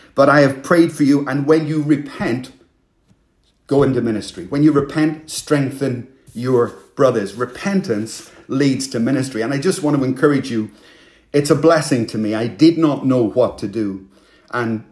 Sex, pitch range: male, 115-150 Hz